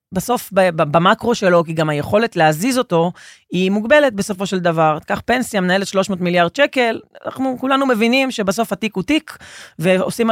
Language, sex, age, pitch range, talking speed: Hebrew, female, 30-49, 165-220 Hz, 155 wpm